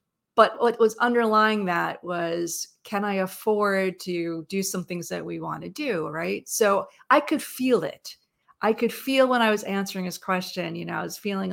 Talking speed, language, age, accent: 200 wpm, English, 40-59, American